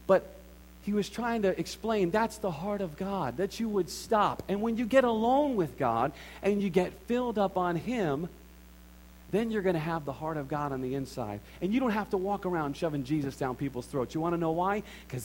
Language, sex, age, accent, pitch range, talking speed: English, male, 40-59, American, 140-195 Hz, 230 wpm